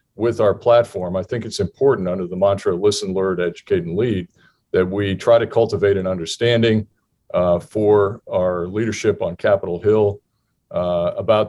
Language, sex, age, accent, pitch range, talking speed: English, male, 50-69, American, 90-110 Hz, 160 wpm